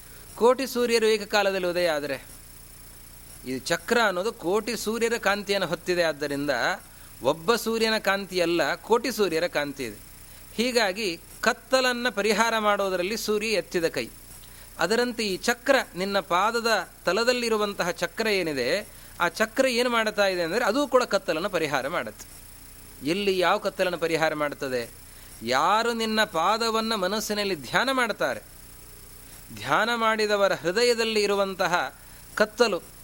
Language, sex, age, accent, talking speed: Kannada, male, 30-49, native, 115 wpm